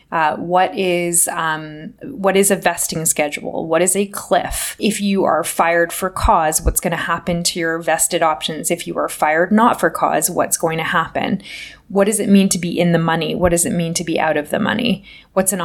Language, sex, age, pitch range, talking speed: English, female, 20-39, 165-200 Hz, 225 wpm